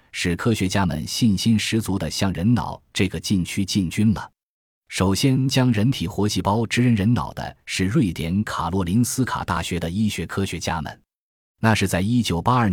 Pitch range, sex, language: 85-115 Hz, male, Chinese